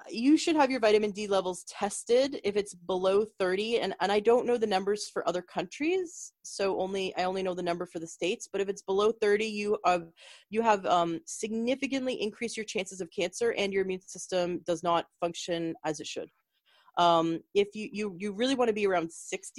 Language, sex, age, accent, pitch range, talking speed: English, female, 30-49, American, 180-225 Hz, 210 wpm